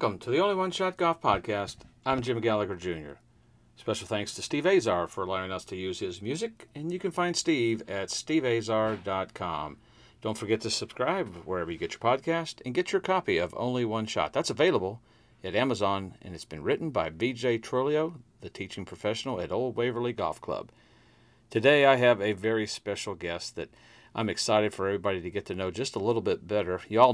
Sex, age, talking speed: male, 50-69, 195 wpm